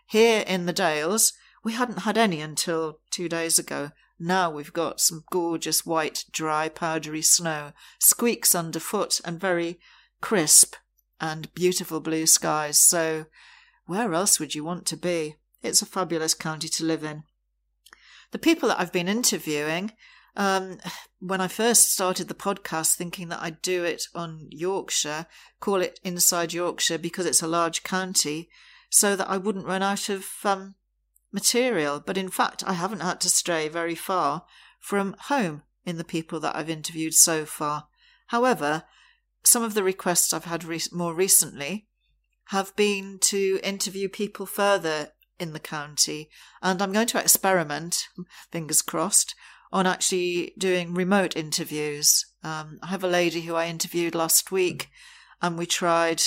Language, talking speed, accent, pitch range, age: English, 155 wpm, British, 160-195 Hz, 40-59